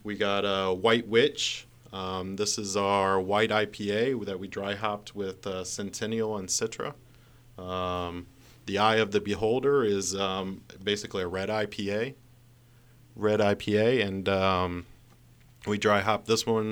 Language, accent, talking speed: English, American, 145 wpm